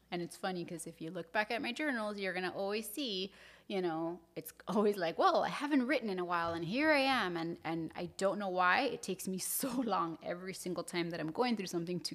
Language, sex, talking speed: English, female, 255 wpm